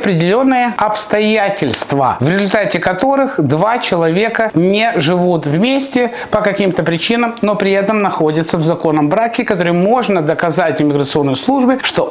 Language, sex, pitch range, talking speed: Russian, male, 160-215 Hz, 130 wpm